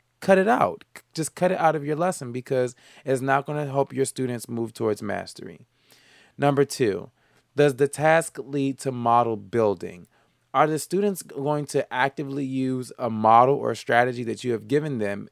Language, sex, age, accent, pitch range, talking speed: English, male, 20-39, American, 115-140 Hz, 180 wpm